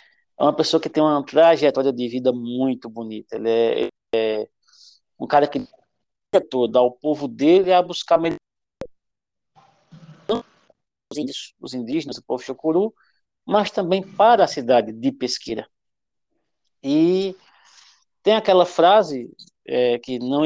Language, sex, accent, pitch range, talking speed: Portuguese, male, Brazilian, 130-175 Hz, 125 wpm